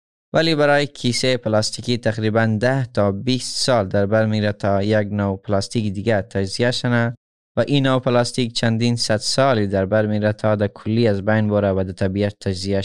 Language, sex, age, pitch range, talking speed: Persian, male, 20-39, 100-125 Hz, 180 wpm